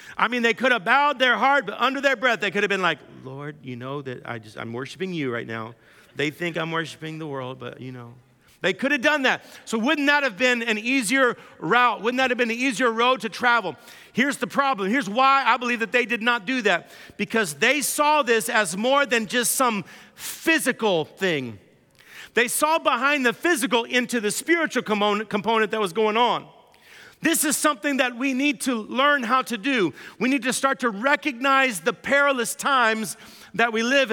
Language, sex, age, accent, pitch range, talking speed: English, male, 50-69, American, 210-275 Hz, 210 wpm